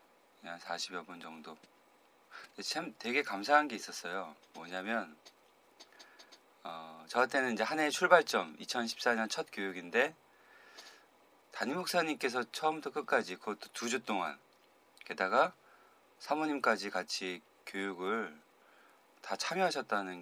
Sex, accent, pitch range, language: male, native, 95-140 Hz, Korean